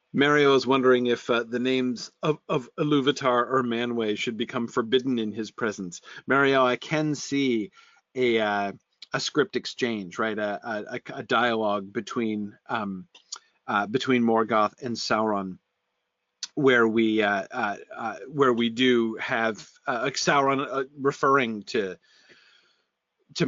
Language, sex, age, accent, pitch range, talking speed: English, male, 40-59, American, 110-140 Hz, 140 wpm